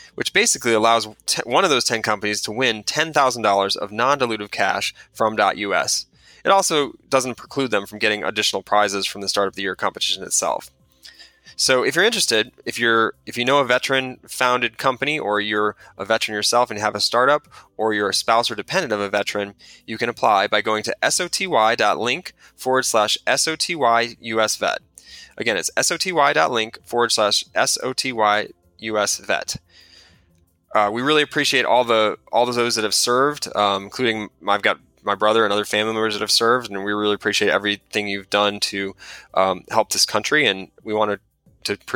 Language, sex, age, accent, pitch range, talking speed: English, male, 20-39, American, 100-120 Hz, 180 wpm